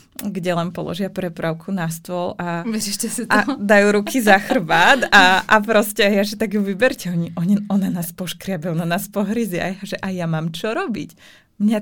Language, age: Czech, 20-39